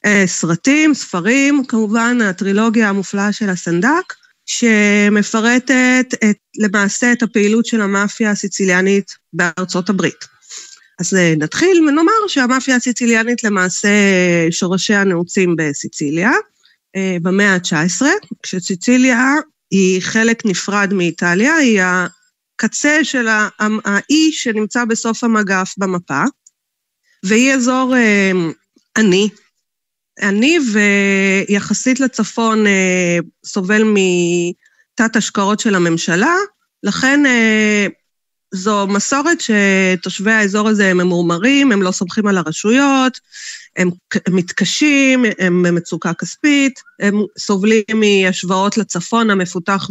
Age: 30-49